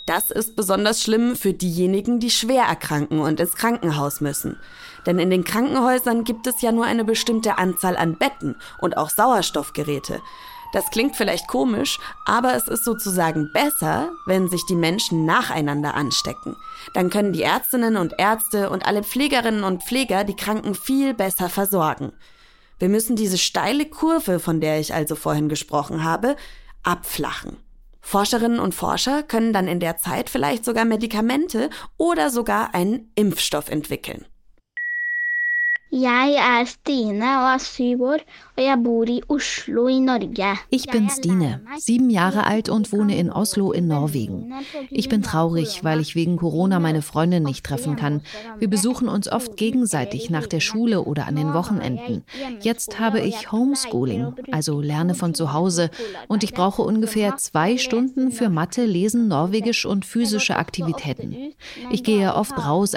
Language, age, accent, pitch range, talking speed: German, 20-39, German, 170-245 Hz, 145 wpm